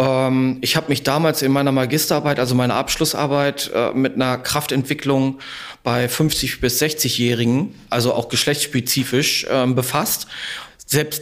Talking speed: 120 wpm